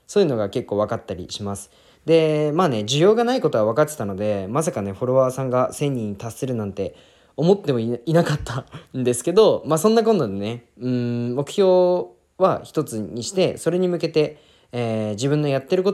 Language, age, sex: Japanese, 20-39, male